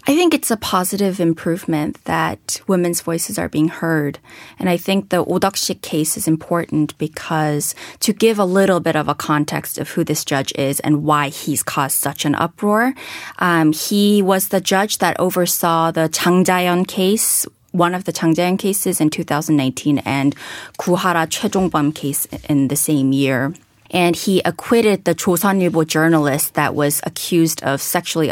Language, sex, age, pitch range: Korean, female, 30-49, 150-185 Hz